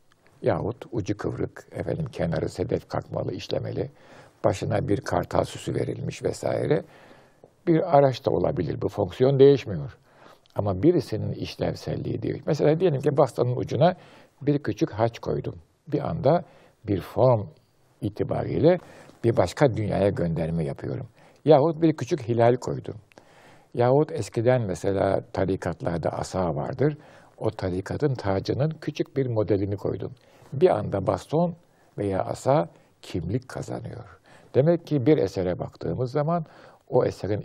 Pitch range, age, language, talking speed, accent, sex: 100-150 Hz, 60-79, Turkish, 125 wpm, native, male